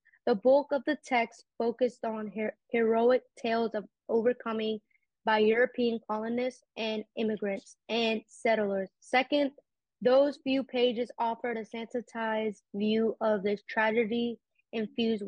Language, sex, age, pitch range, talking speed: English, female, 20-39, 210-235 Hz, 120 wpm